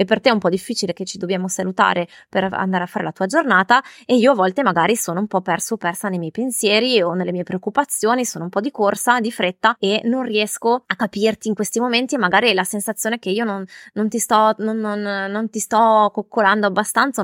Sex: female